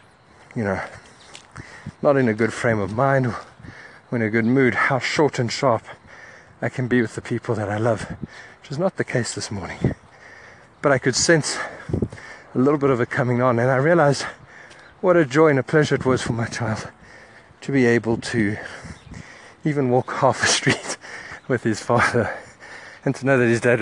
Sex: male